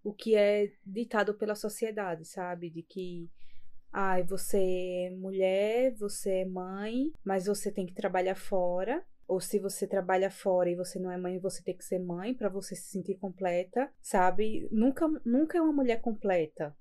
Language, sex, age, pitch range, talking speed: Portuguese, female, 20-39, 185-220 Hz, 175 wpm